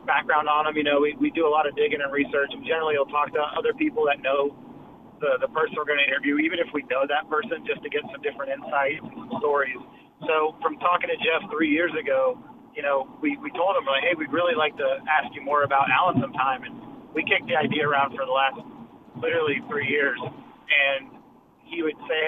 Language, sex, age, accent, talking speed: English, male, 30-49, American, 230 wpm